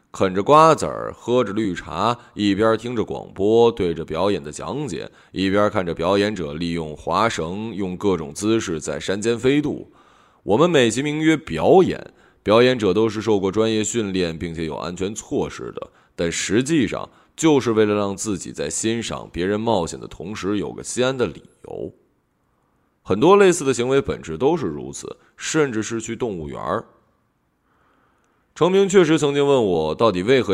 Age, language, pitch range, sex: 20-39, Chinese, 85-120 Hz, male